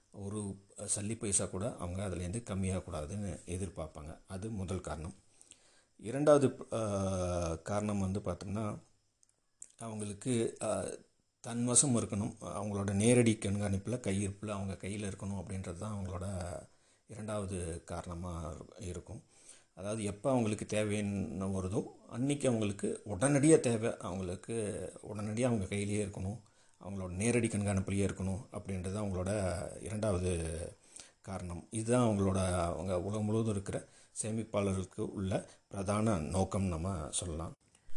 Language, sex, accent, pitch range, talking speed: Tamil, male, native, 90-110 Hz, 100 wpm